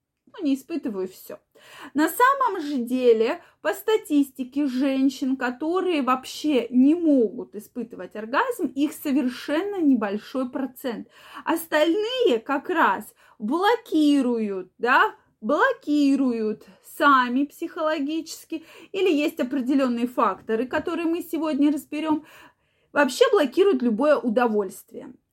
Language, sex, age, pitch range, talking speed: Russian, female, 20-39, 240-315 Hz, 95 wpm